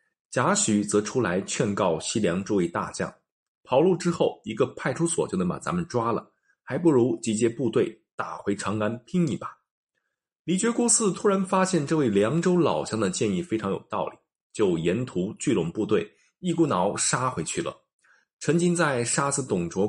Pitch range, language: 110-175 Hz, Chinese